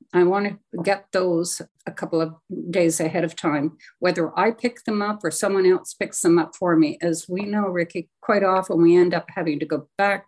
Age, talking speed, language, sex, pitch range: 50-69, 220 wpm, English, female, 165-220 Hz